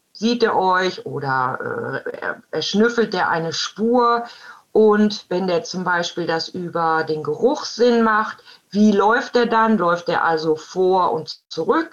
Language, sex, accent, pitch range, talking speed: German, female, German, 165-230 Hz, 160 wpm